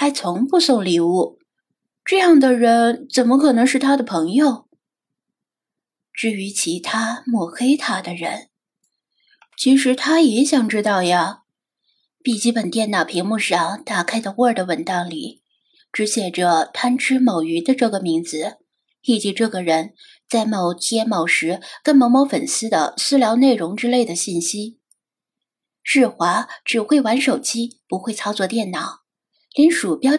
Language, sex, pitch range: Chinese, female, 205-285 Hz